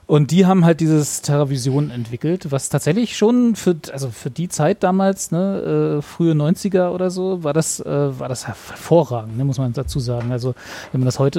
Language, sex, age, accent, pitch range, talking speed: German, male, 30-49, German, 135-170 Hz, 200 wpm